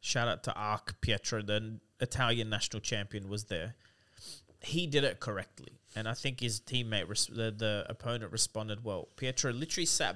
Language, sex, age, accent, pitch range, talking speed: English, male, 20-39, Australian, 105-125 Hz, 170 wpm